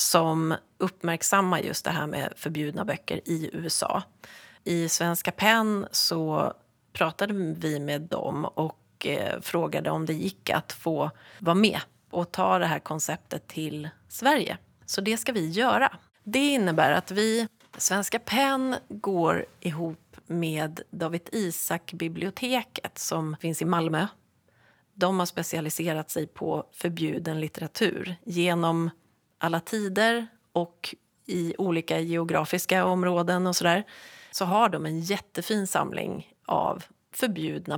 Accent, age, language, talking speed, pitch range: Swedish, 30-49, English, 125 wpm, 165-200 Hz